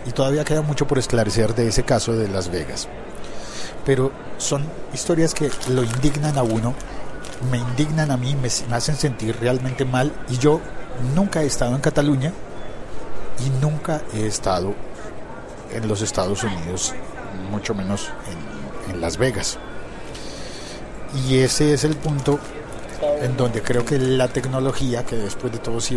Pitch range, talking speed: 110-140 Hz, 150 wpm